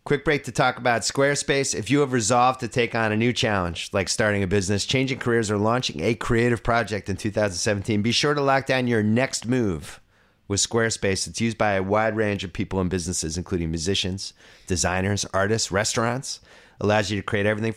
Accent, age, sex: American, 30-49, male